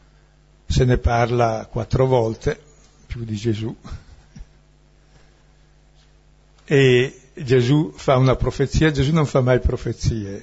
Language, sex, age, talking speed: Italian, male, 60-79, 105 wpm